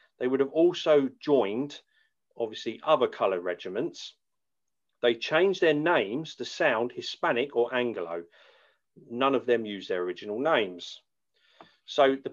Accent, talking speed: British, 130 wpm